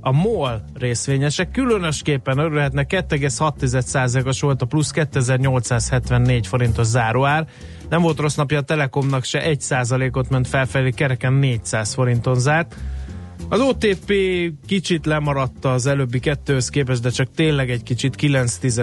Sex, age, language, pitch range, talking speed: male, 30-49, Hungarian, 120-145 Hz, 125 wpm